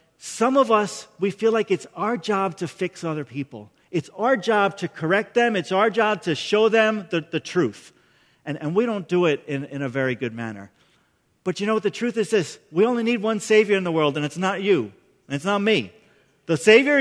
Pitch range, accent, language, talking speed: 165-235 Hz, American, English, 235 wpm